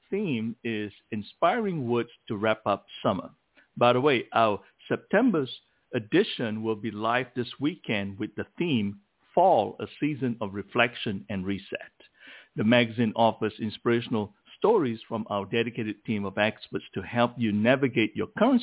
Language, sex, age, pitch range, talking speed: English, male, 60-79, 110-155 Hz, 150 wpm